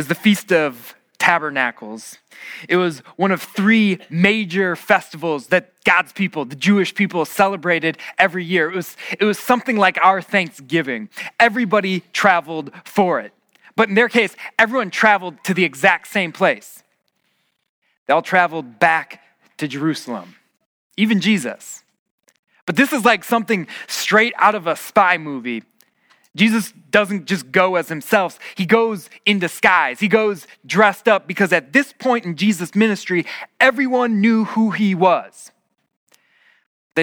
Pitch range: 165-215 Hz